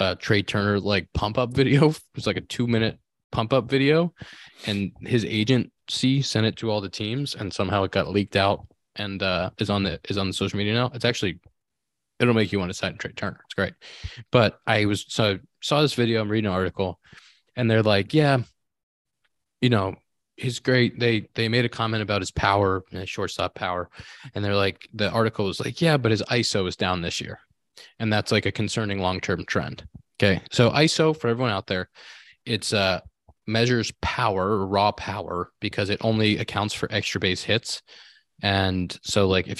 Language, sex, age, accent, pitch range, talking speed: English, male, 20-39, American, 95-115 Hz, 200 wpm